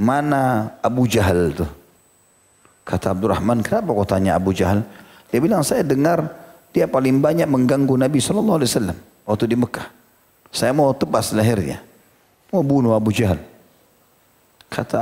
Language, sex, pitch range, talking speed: Indonesian, male, 100-125 Hz, 135 wpm